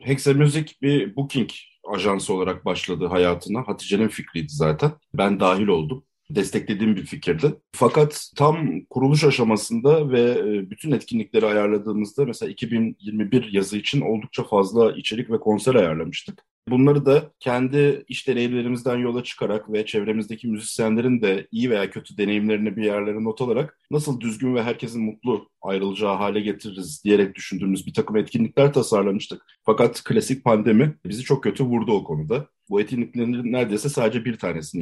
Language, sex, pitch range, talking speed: Turkish, male, 105-140 Hz, 140 wpm